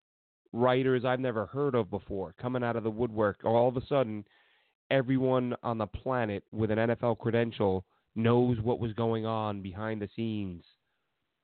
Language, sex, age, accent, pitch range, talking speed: English, male, 30-49, American, 100-120 Hz, 165 wpm